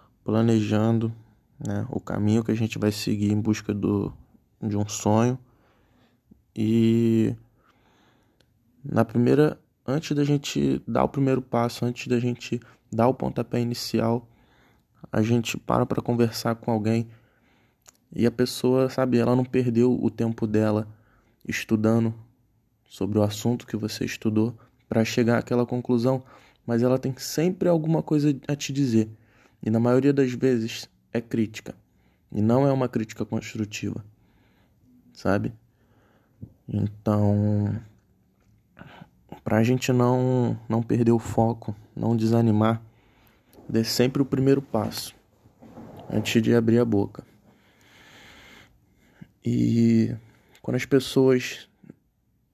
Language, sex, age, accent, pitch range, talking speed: Portuguese, male, 20-39, Brazilian, 110-125 Hz, 120 wpm